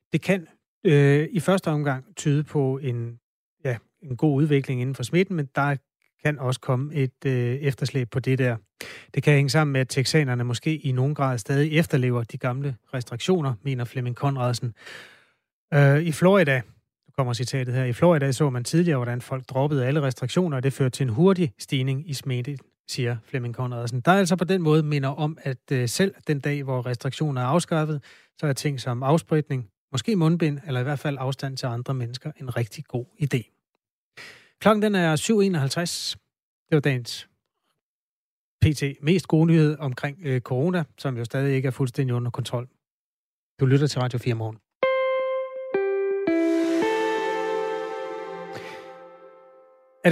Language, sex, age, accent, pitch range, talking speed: Danish, male, 30-49, native, 130-160 Hz, 165 wpm